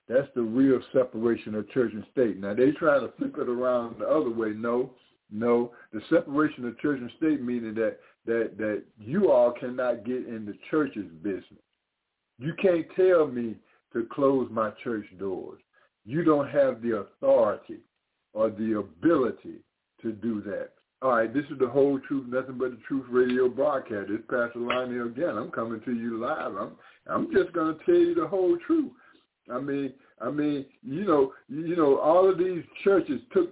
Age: 60-79